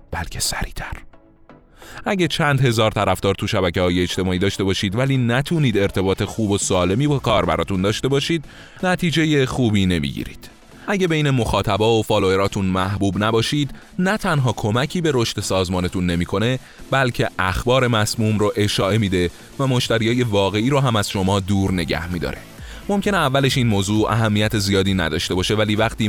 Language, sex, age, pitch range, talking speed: Persian, male, 30-49, 95-135 Hz, 150 wpm